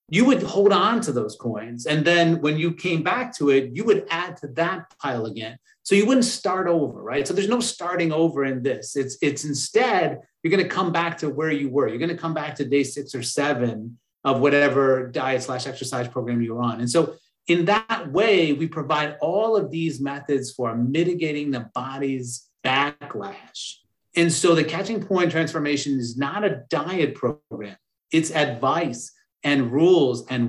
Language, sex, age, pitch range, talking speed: English, male, 30-49, 130-170 Hz, 185 wpm